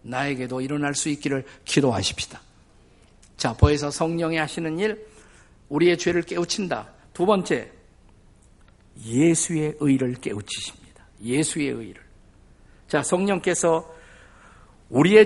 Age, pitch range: 50-69, 125-170 Hz